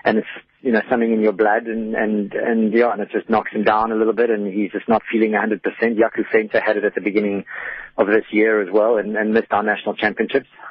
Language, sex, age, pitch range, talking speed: English, male, 30-49, 105-115 Hz, 250 wpm